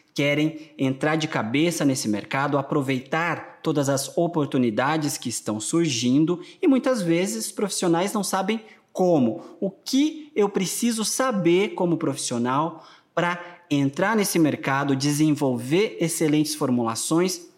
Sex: male